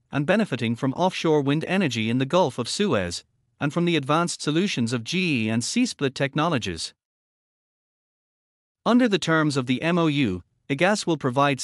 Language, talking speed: English, 155 wpm